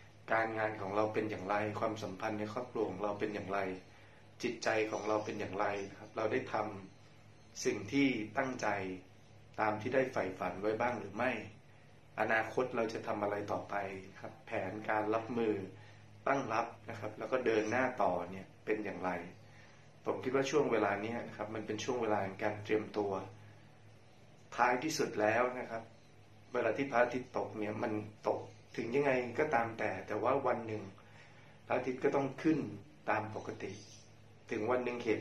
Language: Thai